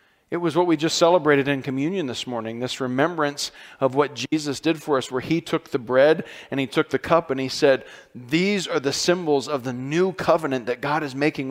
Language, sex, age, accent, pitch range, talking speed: English, male, 40-59, American, 130-170 Hz, 225 wpm